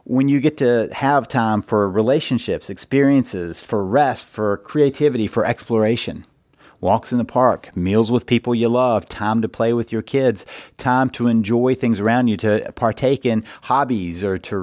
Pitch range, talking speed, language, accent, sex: 110-140 Hz, 170 wpm, English, American, male